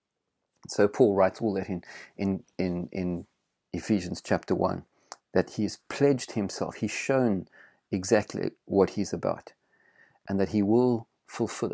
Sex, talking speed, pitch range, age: male, 140 wpm, 95-115 Hz, 40-59